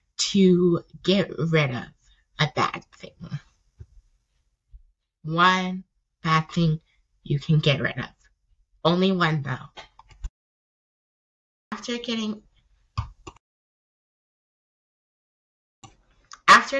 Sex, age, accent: female, 20-39, American